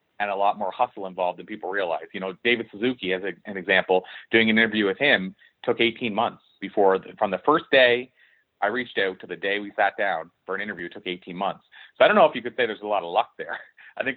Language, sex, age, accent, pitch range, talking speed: English, male, 30-49, American, 100-120 Hz, 265 wpm